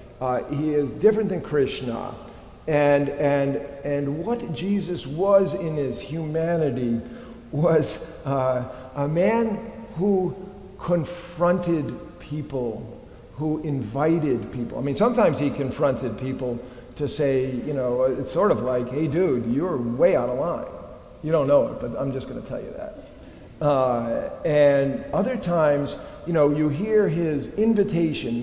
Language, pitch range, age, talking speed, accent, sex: English, 130-170 Hz, 50-69, 145 wpm, American, male